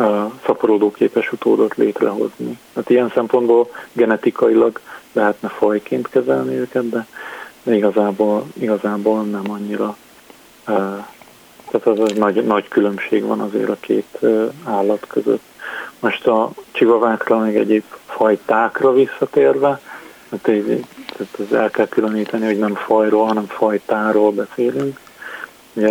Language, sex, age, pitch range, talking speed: Hungarian, male, 40-59, 105-115 Hz, 110 wpm